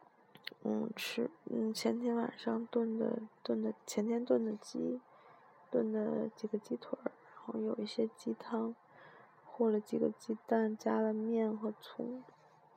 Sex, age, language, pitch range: female, 20-39, Chinese, 220-240 Hz